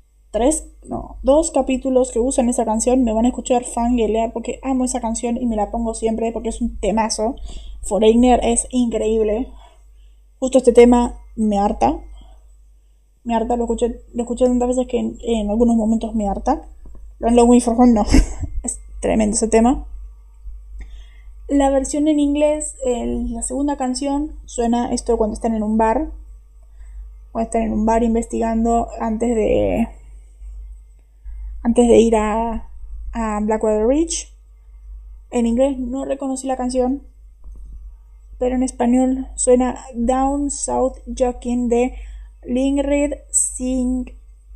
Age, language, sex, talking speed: 10-29, Spanish, female, 140 wpm